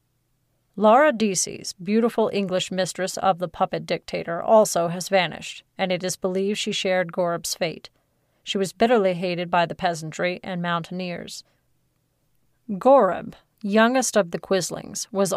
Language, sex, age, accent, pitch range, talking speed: English, female, 30-49, American, 175-210 Hz, 135 wpm